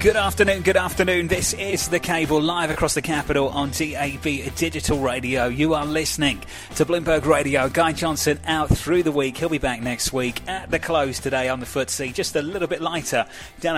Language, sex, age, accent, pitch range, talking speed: English, male, 30-49, British, 115-145 Hz, 200 wpm